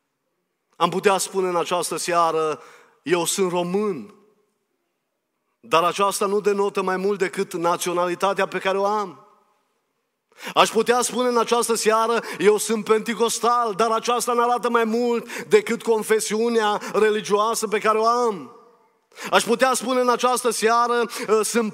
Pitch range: 200-245 Hz